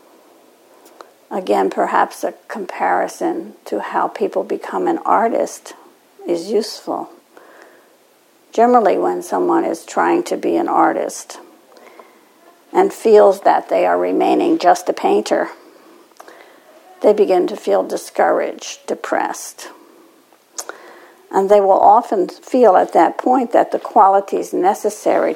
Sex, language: female, English